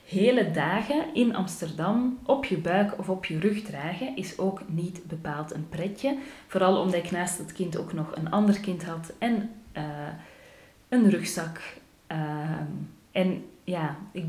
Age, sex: 30-49, female